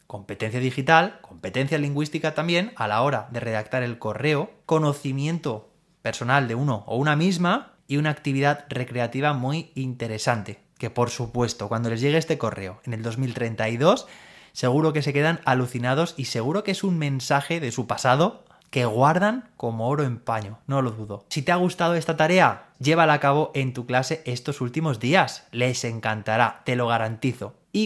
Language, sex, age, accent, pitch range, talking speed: Spanish, male, 20-39, Spanish, 120-155 Hz, 170 wpm